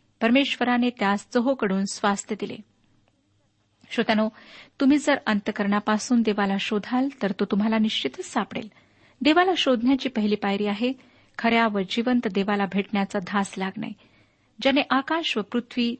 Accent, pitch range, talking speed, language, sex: native, 205-250 Hz, 120 wpm, Marathi, female